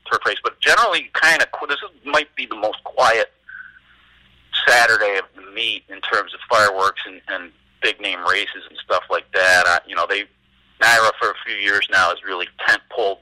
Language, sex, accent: English, male, American